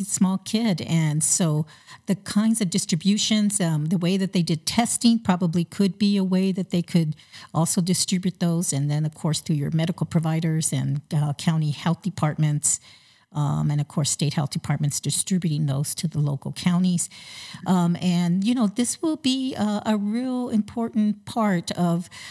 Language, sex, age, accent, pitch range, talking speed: English, female, 50-69, American, 160-200 Hz, 175 wpm